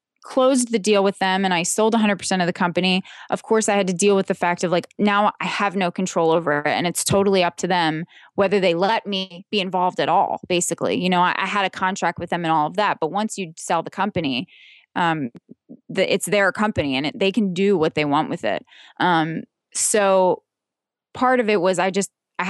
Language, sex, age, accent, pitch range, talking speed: English, female, 20-39, American, 165-200 Hz, 235 wpm